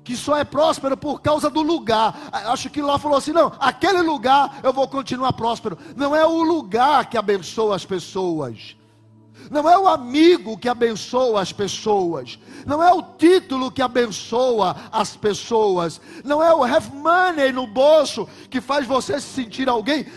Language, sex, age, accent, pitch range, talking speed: Portuguese, male, 50-69, Brazilian, 175-285 Hz, 170 wpm